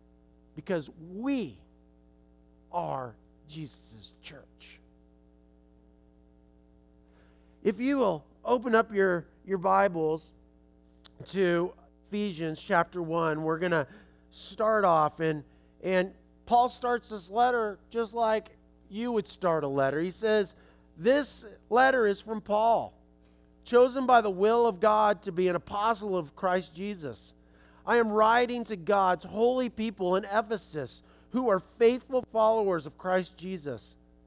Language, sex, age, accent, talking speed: English, male, 40-59, American, 125 wpm